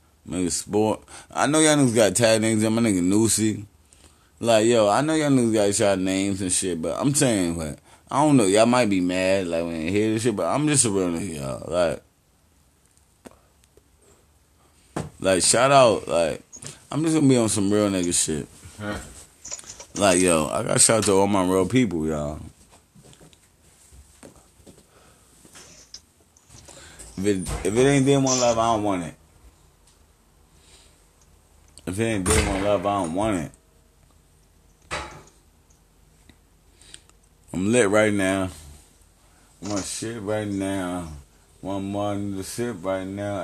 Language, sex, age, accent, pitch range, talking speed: English, male, 20-39, American, 80-105 Hz, 150 wpm